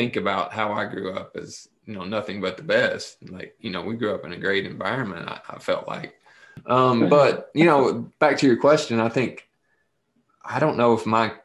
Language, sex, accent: English, male, American